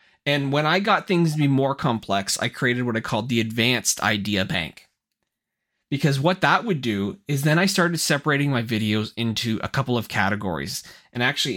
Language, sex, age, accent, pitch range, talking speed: English, male, 30-49, American, 115-155 Hz, 190 wpm